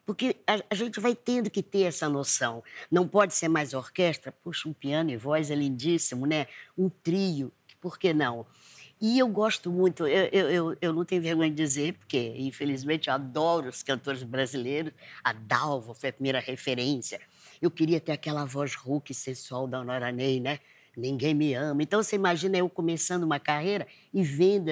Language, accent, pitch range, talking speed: Portuguese, Brazilian, 140-185 Hz, 180 wpm